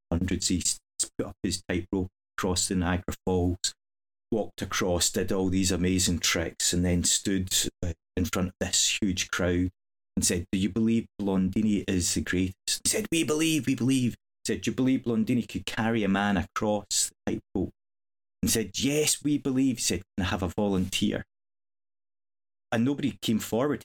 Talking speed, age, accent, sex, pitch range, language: 175 wpm, 30-49, British, male, 95-115 Hz, English